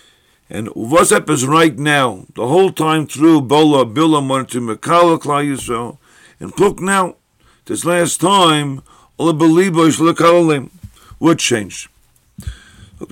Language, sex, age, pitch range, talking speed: English, male, 50-69, 135-160 Hz, 135 wpm